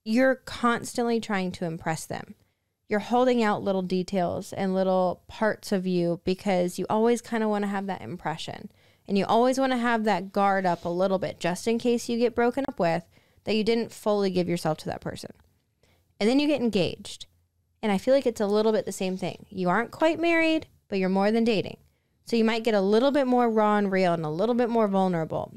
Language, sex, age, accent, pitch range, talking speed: English, female, 10-29, American, 180-230 Hz, 230 wpm